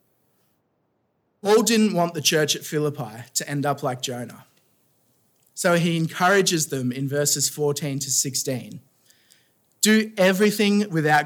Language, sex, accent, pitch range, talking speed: English, male, Australian, 130-165 Hz, 130 wpm